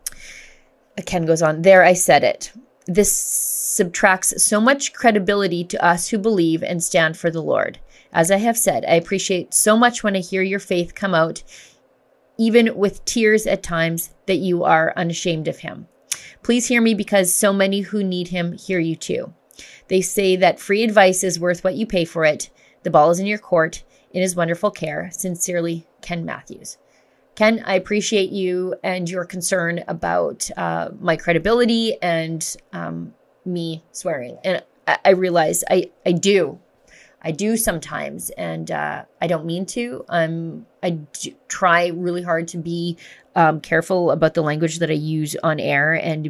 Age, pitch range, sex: 30-49, 165-200 Hz, female